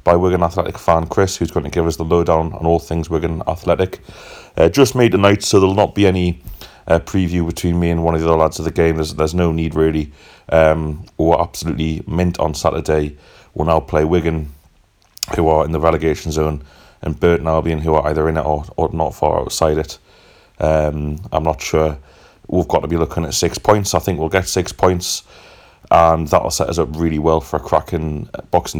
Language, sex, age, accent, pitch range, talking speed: English, male, 30-49, British, 80-85 Hz, 215 wpm